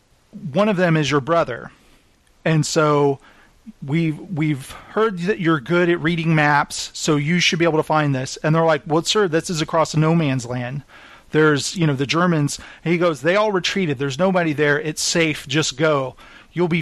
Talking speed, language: 195 wpm, English